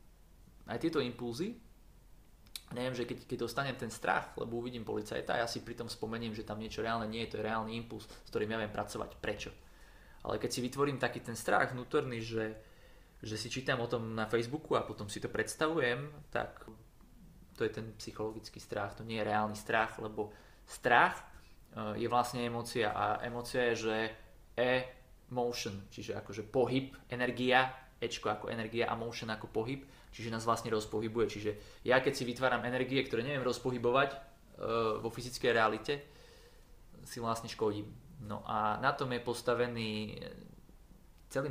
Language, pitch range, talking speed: Slovak, 105-125 Hz, 165 wpm